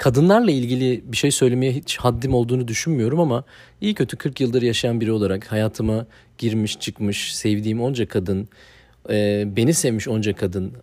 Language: Turkish